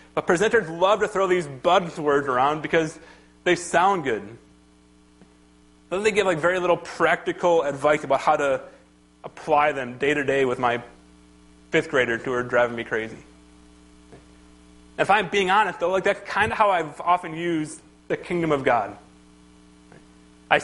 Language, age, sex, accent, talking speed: English, 30-49, male, American, 155 wpm